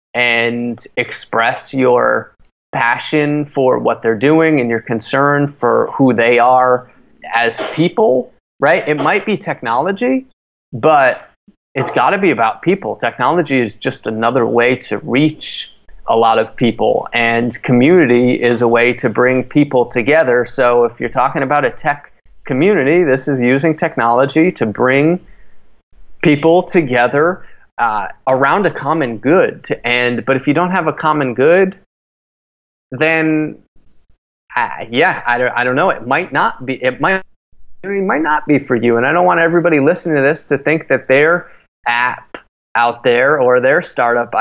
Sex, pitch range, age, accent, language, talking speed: male, 120-160 Hz, 30-49, American, English, 160 wpm